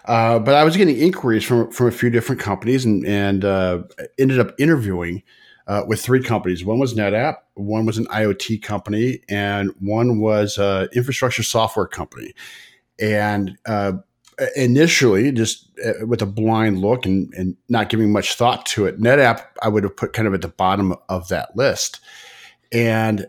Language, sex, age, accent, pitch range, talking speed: English, male, 50-69, American, 100-120 Hz, 175 wpm